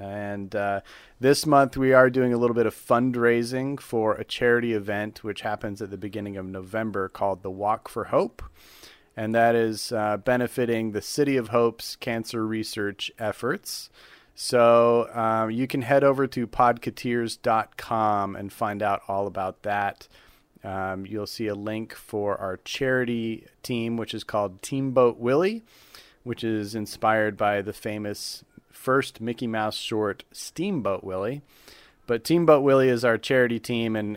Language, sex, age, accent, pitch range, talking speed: English, male, 30-49, American, 105-120 Hz, 155 wpm